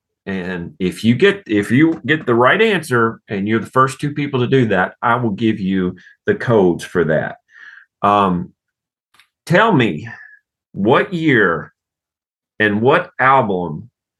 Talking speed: 150 wpm